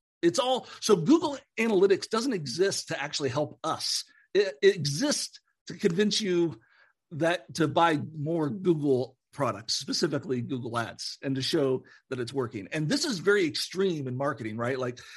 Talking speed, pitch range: 160 wpm, 140-195 Hz